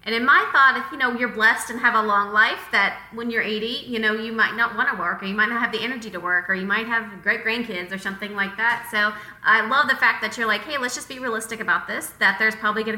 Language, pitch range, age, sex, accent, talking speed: English, 200-245 Hz, 20-39, female, American, 290 wpm